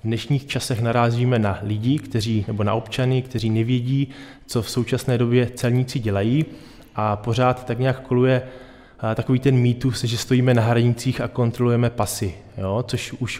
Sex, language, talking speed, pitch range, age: male, Czech, 160 wpm, 115-130 Hz, 20-39